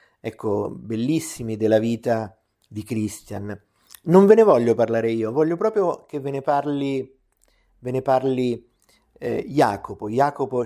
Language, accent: Italian, native